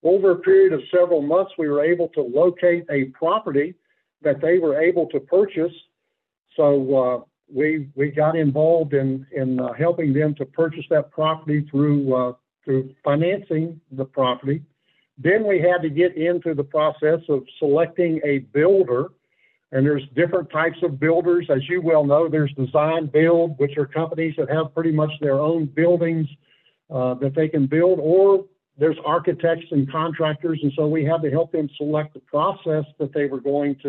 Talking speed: 175 wpm